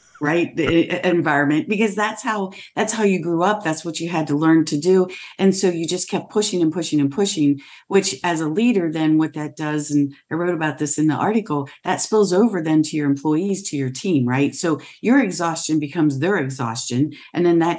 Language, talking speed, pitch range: English, 220 wpm, 150-200 Hz